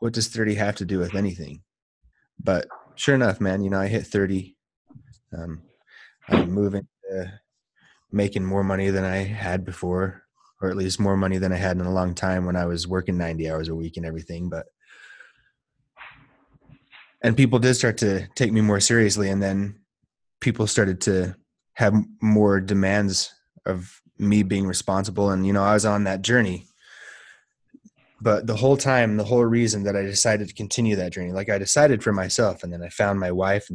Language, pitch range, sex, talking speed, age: English, 95-105 Hz, male, 190 wpm, 20-39